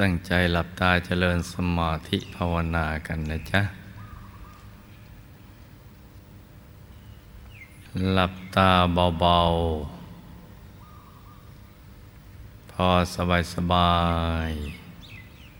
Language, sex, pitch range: Thai, male, 85-100 Hz